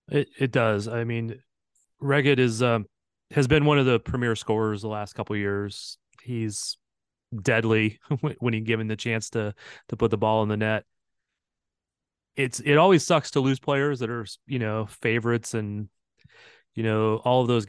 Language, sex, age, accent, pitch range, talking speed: English, male, 30-49, American, 110-130 Hz, 185 wpm